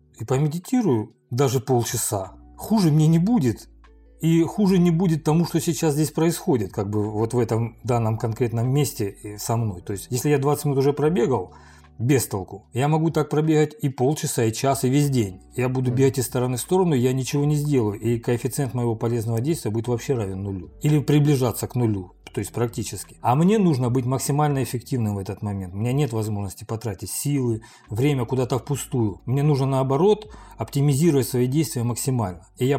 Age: 40-59